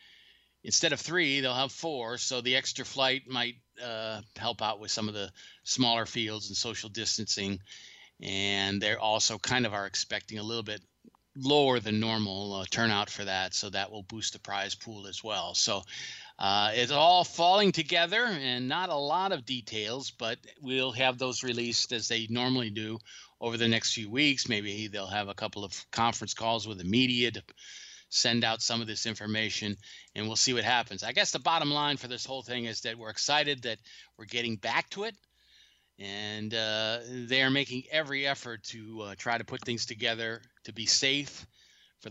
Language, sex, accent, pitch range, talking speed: English, male, American, 110-130 Hz, 195 wpm